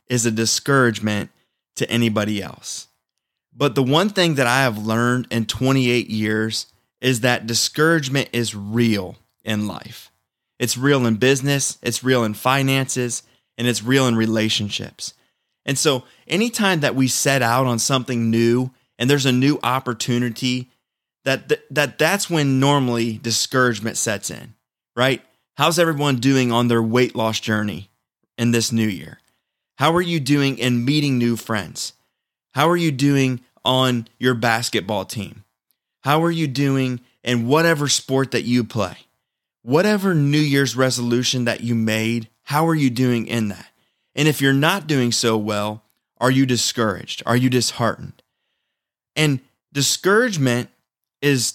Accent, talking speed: American, 150 wpm